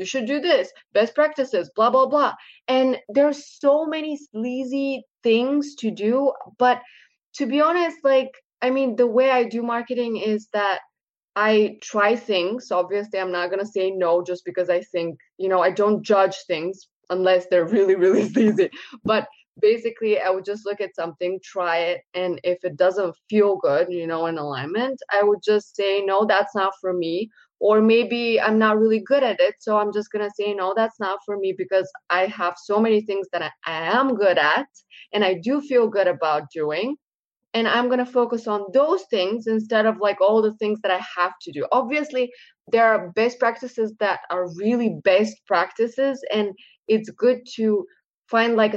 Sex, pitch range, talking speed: female, 185-240 Hz, 195 wpm